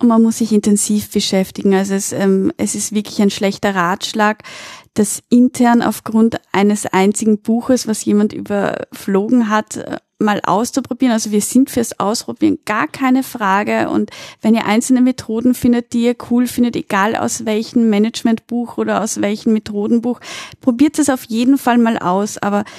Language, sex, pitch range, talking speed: German, female, 205-235 Hz, 160 wpm